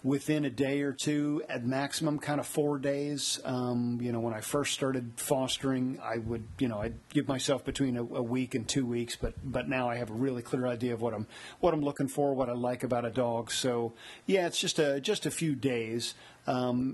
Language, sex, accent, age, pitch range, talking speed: English, male, American, 50-69, 120-140 Hz, 230 wpm